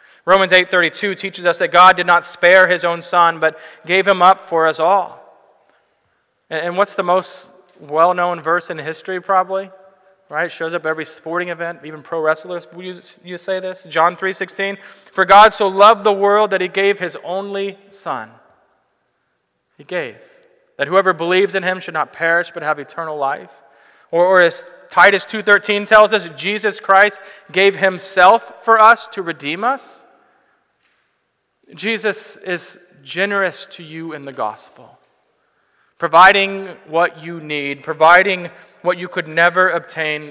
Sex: male